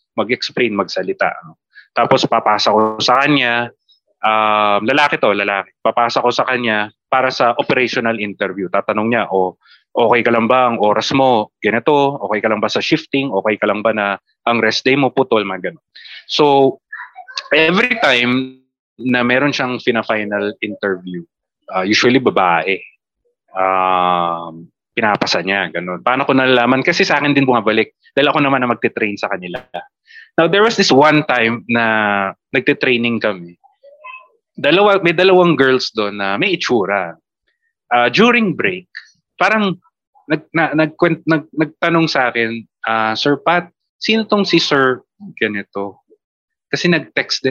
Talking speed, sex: 150 wpm, male